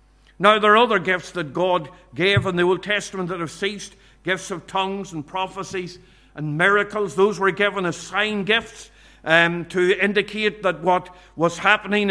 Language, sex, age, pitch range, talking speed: English, male, 50-69, 175-205 Hz, 175 wpm